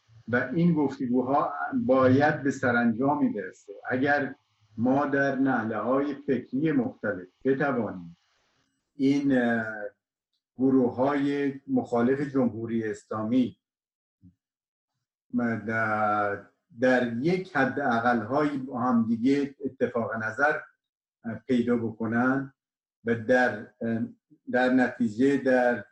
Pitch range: 115-140 Hz